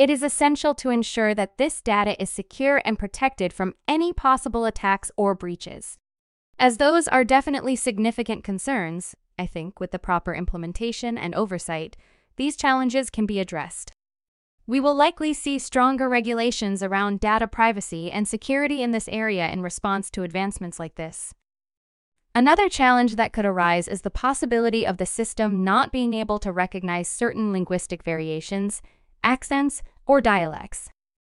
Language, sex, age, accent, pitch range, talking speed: English, female, 20-39, American, 185-255 Hz, 150 wpm